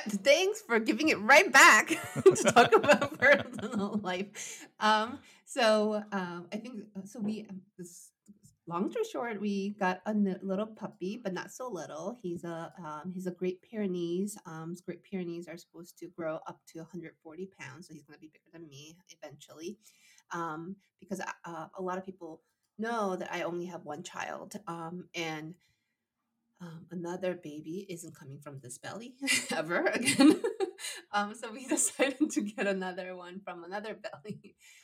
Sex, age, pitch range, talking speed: female, 30-49, 165-215 Hz, 160 wpm